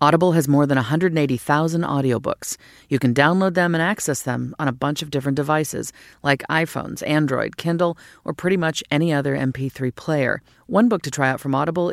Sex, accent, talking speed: female, American, 185 wpm